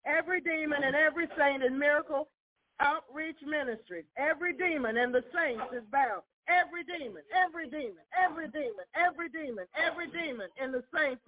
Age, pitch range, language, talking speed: 40-59, 275-345 Hz, English, 155 wpm